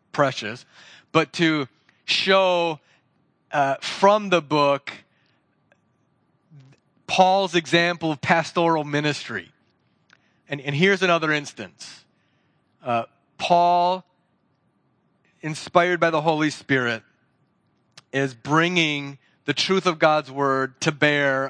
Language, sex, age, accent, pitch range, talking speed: English, male, 30-49, American, 140-170 Hz, 95 wpm